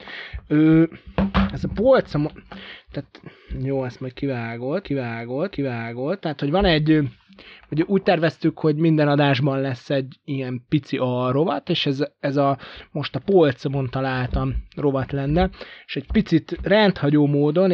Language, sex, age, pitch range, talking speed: Hungarian, male, 20-39, 130-160 Hz, 135 wpm